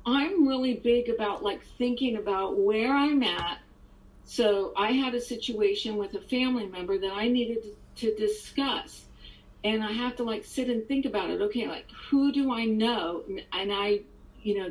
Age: 50-69